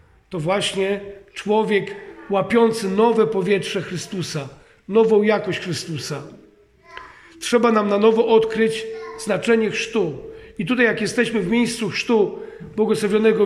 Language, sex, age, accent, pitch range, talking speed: Polish, male, 40-59, native, 200-235 Hz, 110 wpm